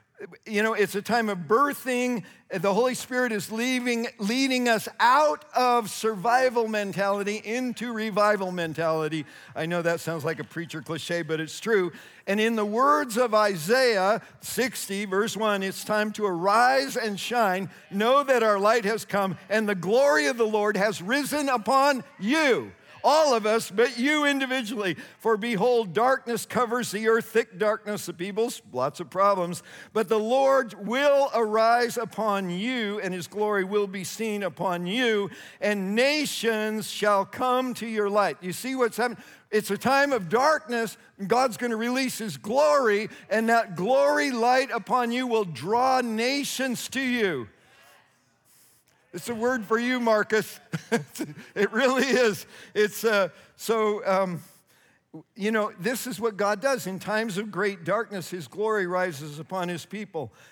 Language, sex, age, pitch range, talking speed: English, male, 50-69, 195-240 Hz, 160 wpm